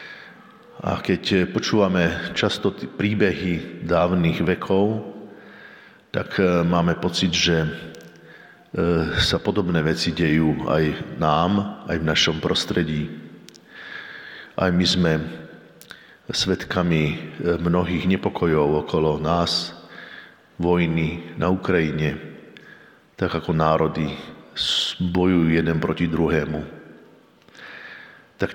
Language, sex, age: Slovak, male, 50-69